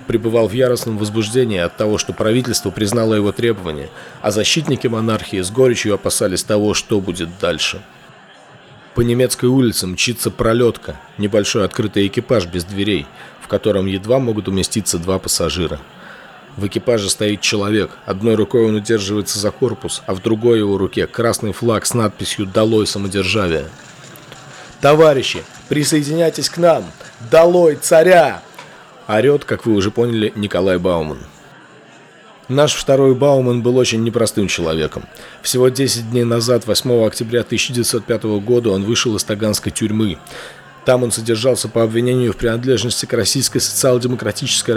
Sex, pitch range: male, 100-125 Hz